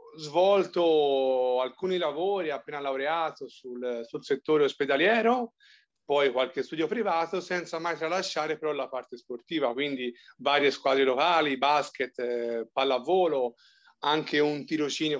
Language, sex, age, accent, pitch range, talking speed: Italian, male, 30-49, native, 125-165 Hz, 120 wpm